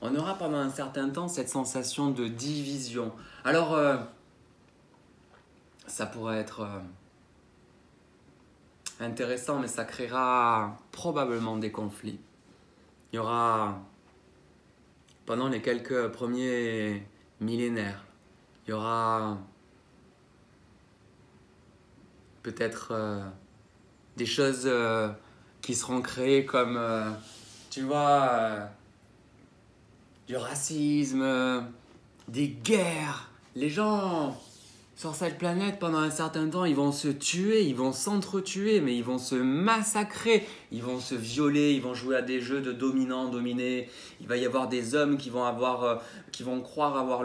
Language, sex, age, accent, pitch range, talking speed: French, male, 20-39, French, 115-145 Hz, 125 wpm